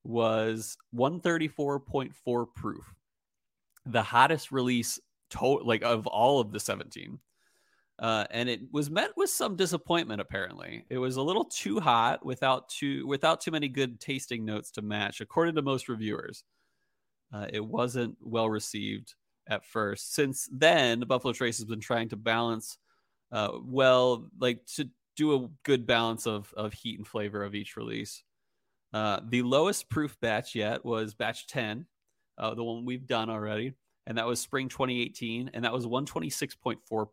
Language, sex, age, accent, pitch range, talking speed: English, male, 30-49, American, 110-135 Hz, 160 wpm